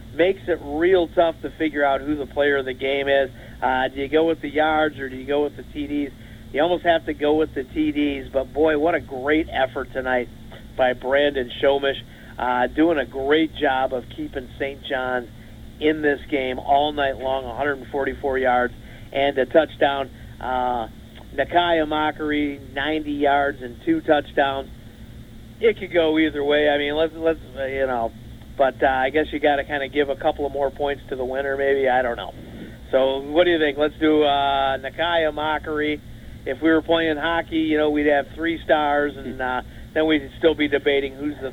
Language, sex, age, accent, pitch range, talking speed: English, male, 50-69, American, 130-155 Hz, 200 wpm